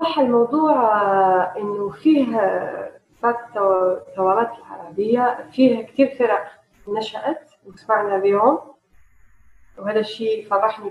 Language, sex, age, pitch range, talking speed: Arabic, female, 30-49, 195-260 Hz, 90 wpm